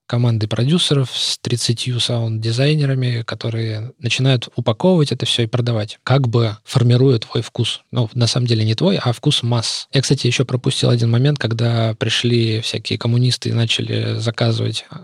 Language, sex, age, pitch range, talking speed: Russian, male, 20-39, 110-125 Hz, 155 wpm